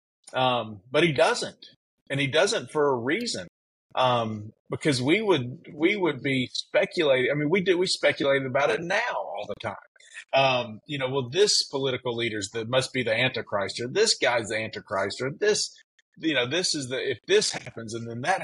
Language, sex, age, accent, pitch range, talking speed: English, male, 40-59, American, 115-150 Hz, 195 wpm